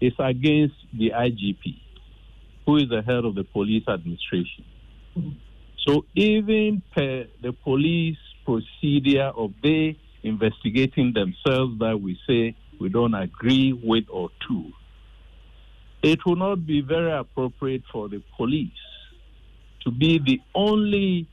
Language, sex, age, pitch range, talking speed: English, male, 50-69, 110-160 Hz, 125 wpm